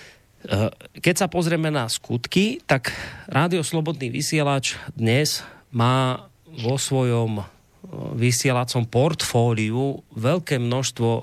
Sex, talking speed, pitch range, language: male, 90 wpm, 110-135 Hz, Slovak